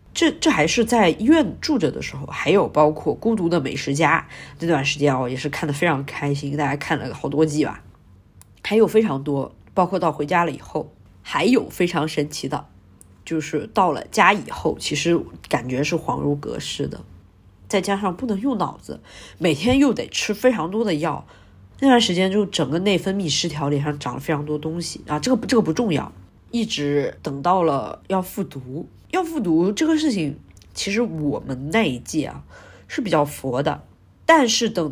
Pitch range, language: 145-215 Hz, Chinese